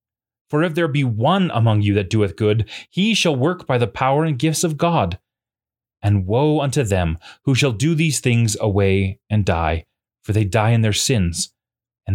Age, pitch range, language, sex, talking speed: 30-49, 105-145 Hz, English, male, 195 wpm